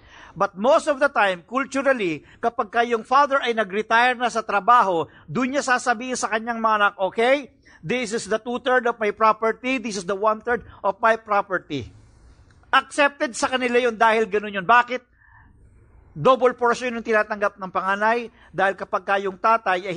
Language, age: English, 50-69